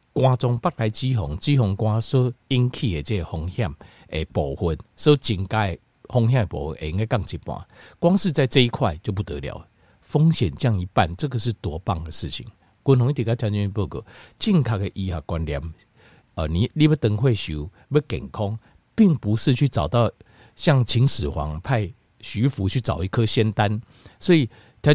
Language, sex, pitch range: Chinese, male, 95-130 Hz